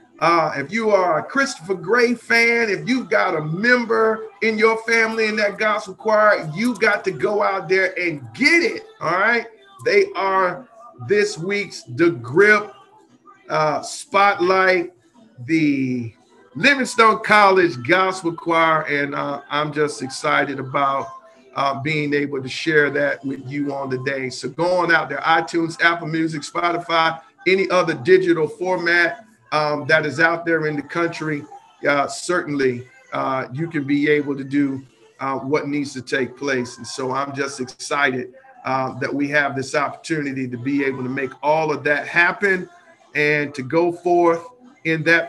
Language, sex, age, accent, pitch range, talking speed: English, male, 40-59, American, 145-230 Hz, 165 wpm